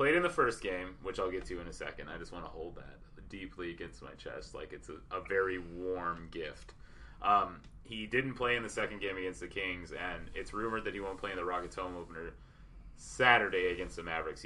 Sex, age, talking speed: male, 30-49, 235 wpm